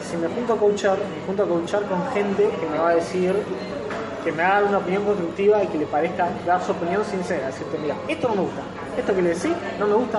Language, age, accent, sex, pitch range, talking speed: Spanish, 20-39, Argentinian, male, 170-210 Hz, 255 wpm